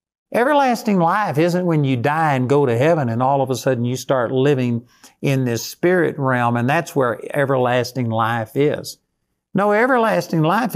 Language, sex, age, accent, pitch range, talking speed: English, male, 50-69, American, 125-160 Hz, 175 wpm